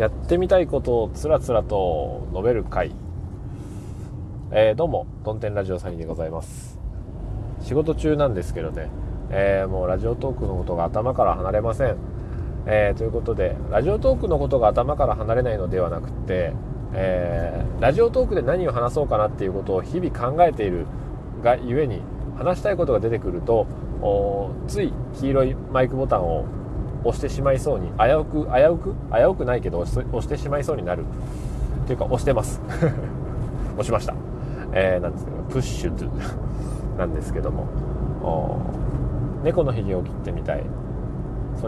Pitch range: 100-135 Hz